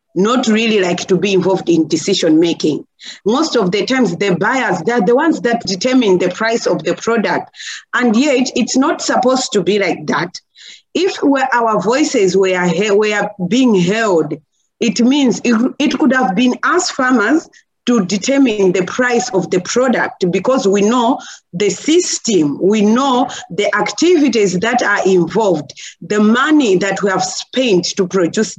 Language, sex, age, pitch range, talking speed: English, female, 40-59, 185-245 Hz, 165 wpm